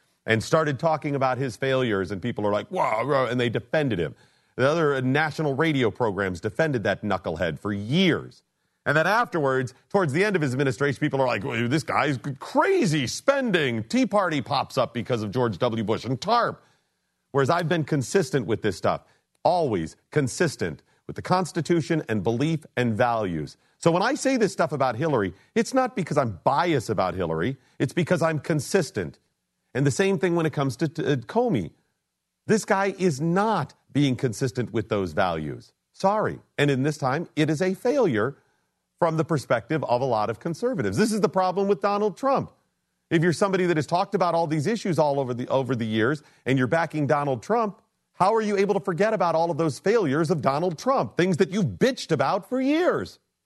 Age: 40-59